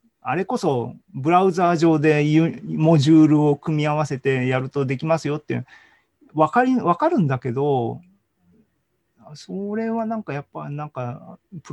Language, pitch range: Japanese, 125-165 Hz